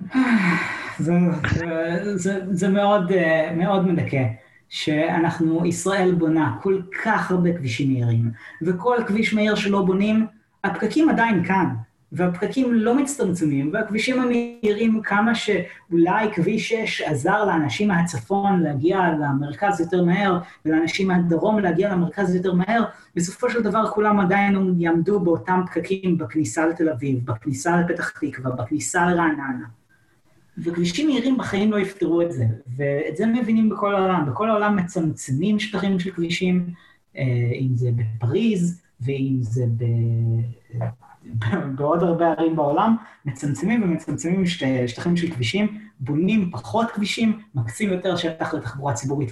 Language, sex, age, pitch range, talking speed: Hebrew, female, 30-49, 140-200 Hz, 125 wpm